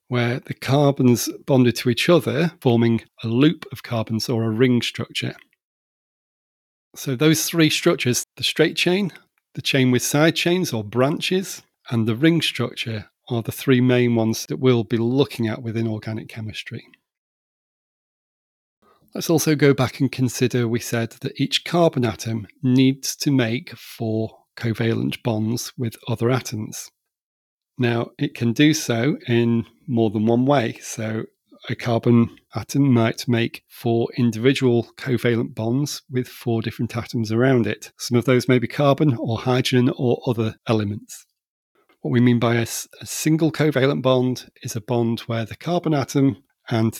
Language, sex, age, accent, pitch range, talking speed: English, male, 40-59, British, 115-135 Hz, 155 wpm